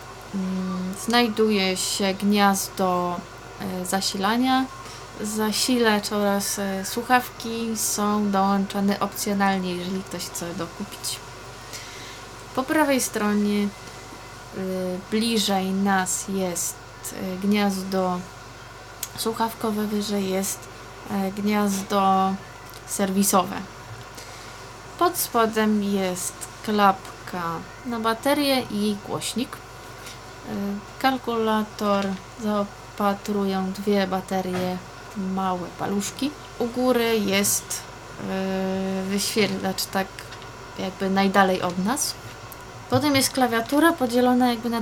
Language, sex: Polish, female